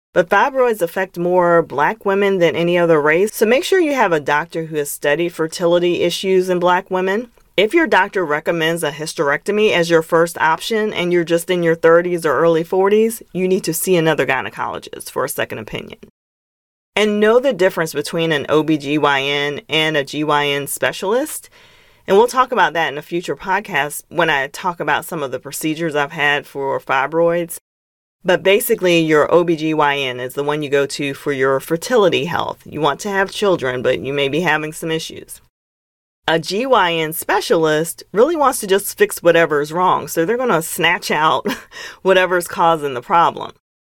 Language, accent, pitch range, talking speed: English, American, 150-195 Hz, 185 wpm